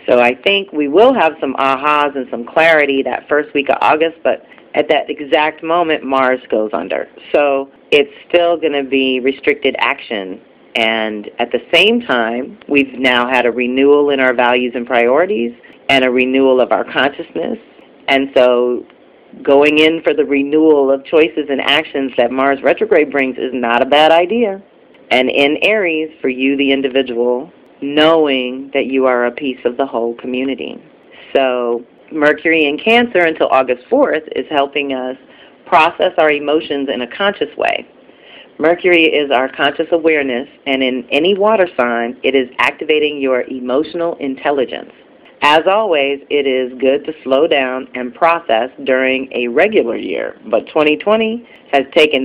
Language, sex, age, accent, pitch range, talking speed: English, female, 40-59, American, 125-155 Hz, 165 wpm